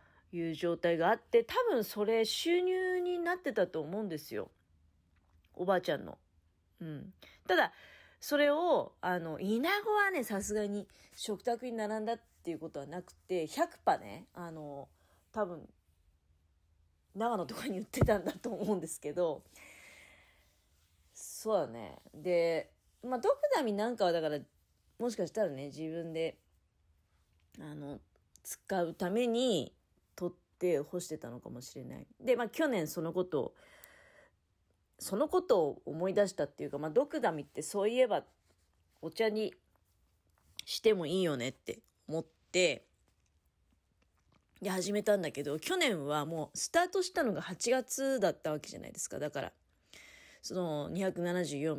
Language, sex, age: Japanese, female, 40-59